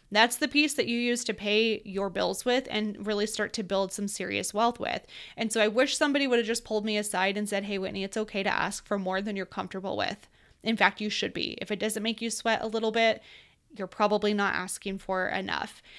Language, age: English, 20-39